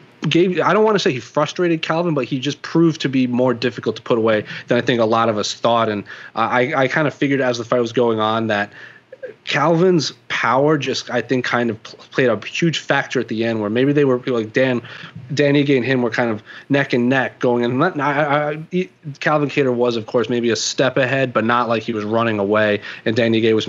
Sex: male